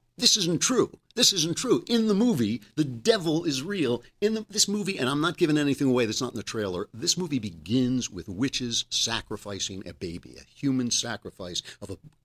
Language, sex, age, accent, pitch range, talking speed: English, male, 50-69, American, 105-160 Hz, 195 wpm